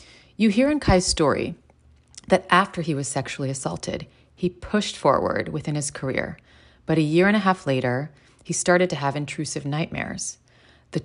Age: 30-49